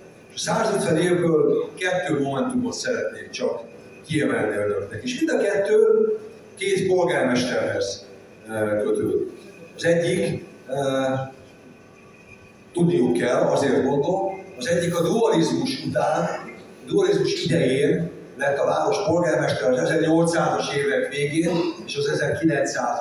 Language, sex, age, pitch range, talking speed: Hungarian, male, 50-69, 160-245 Hz, 105 wpm